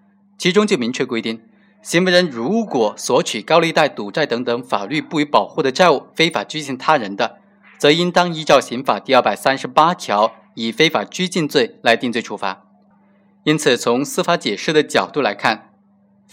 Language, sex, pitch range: Chinese, male, 125-195 Hz